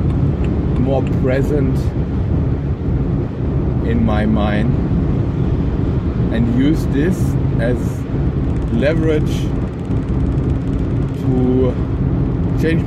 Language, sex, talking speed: English, male, 50 wpm